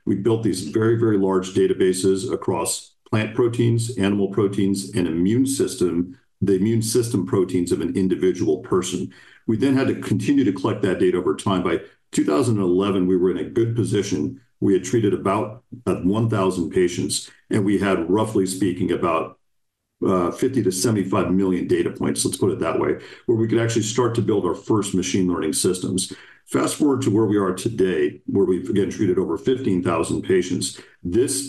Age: 50-69